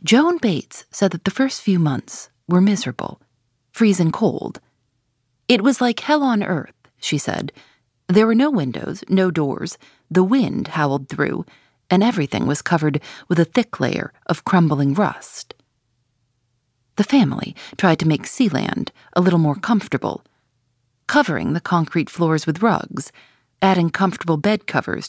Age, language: 40-59, English